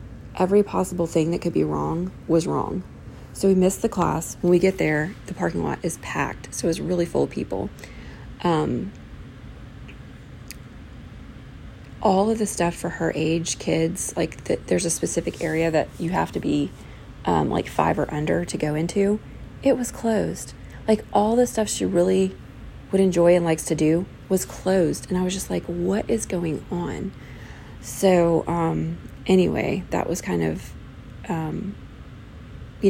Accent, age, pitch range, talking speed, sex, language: American, 30-49, 155-190 Hz, 165 wpm, female, English